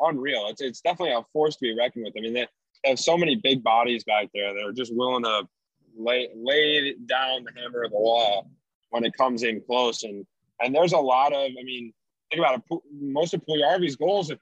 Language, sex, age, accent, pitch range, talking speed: English, male, 20-39, American, 120-145 Hz, 225 wpm